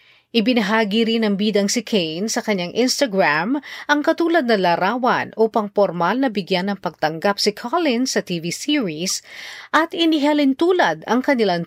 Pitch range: 195-265 Hz